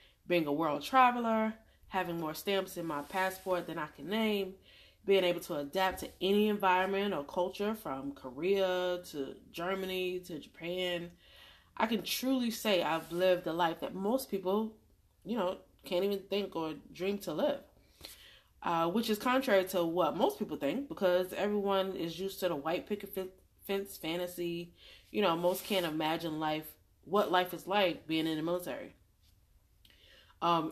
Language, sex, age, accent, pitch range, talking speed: English, female, 20-39, American, 160-200 Hz, 160 wpm